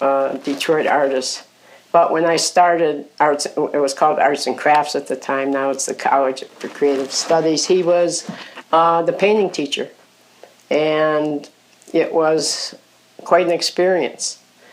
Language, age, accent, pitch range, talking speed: English, 60-79, American, 145-165 Hz, 145 wpm